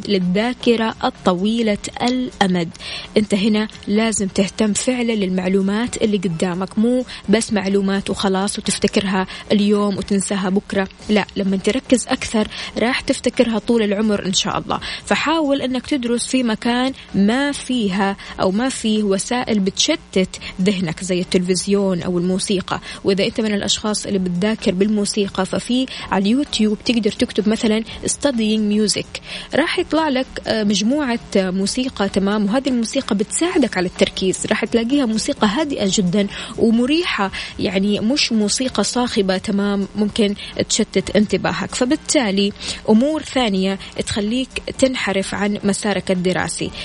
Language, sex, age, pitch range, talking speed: Arabic, female, 20-39, 195-235 Hz, 120 wpm